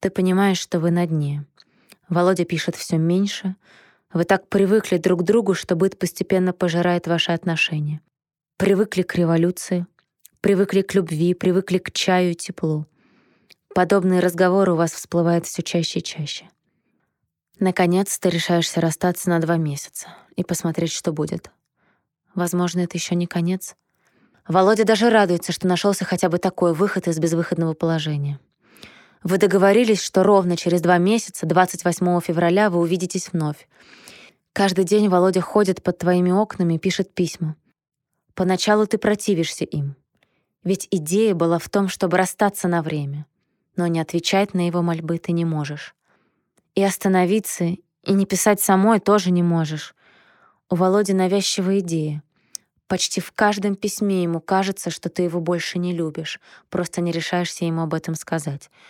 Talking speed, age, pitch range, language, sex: 150 wpm, 20-39, 170-195 Hz, Russian, female